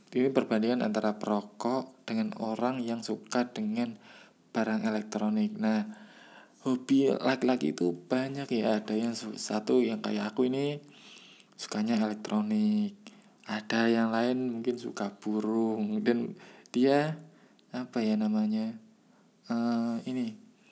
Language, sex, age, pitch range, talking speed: Indonesian, male, 20-39, 110-175 Hz, 115 wpm